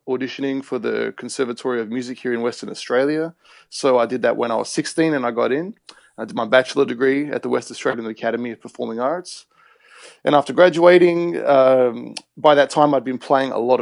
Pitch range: 120-140 Hz